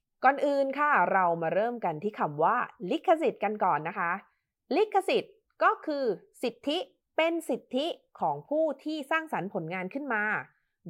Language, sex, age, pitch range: Thai, female, 20-39, 195-285 Hz